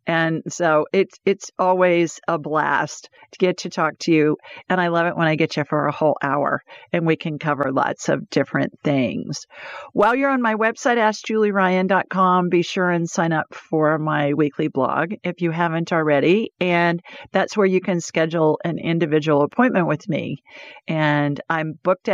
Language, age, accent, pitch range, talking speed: English, 50-69, American, 160-205 Hz, 180 wpm